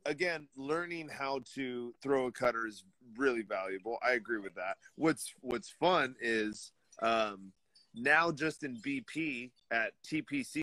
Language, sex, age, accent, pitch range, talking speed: English, male, 30-49, American, 115-150 Hz, 140 wpm